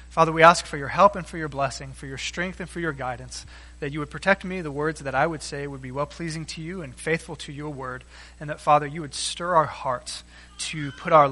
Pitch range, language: 150-200 Hz, English